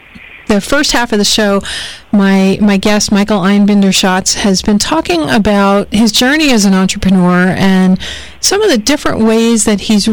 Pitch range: 180-215 Hz